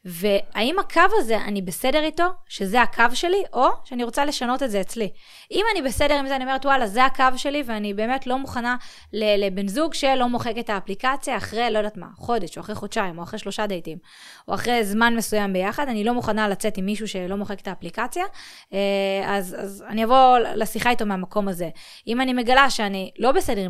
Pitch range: 200-255 Hz